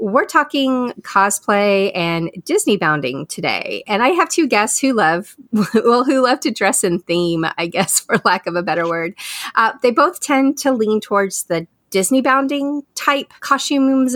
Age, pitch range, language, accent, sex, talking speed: 30-49, 175-245 Hz, English, American, female, 175 wpm